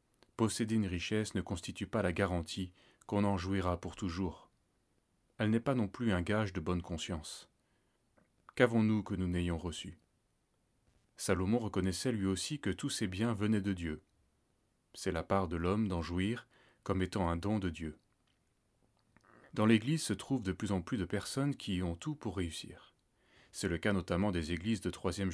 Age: 30-49